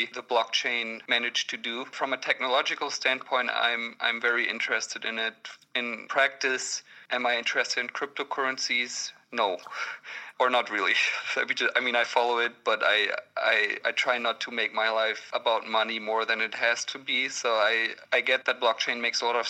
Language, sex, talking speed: English, male, 180 wpm